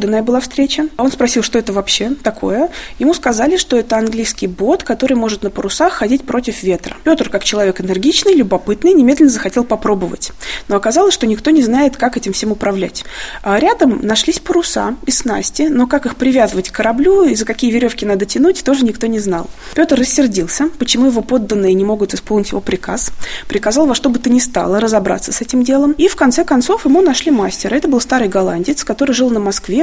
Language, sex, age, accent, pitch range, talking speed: Russian, female, 20-39, native, 200-290 Hz, 200 wpm